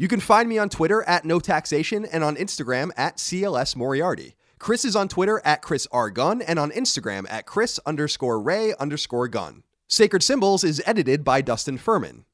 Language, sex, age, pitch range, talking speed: English, male, 30-49, 125-185 Hz, 185 wpm